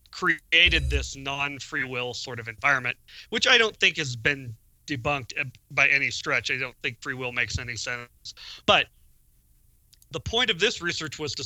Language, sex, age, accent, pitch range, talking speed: English, male, 40-59, American, 110-160 Hz, 175 wpm